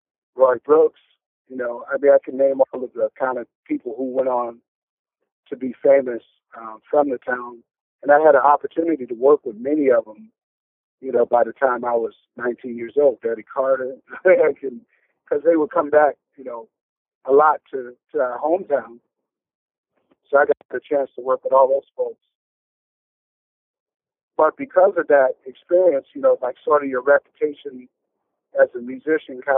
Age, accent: 50-69, American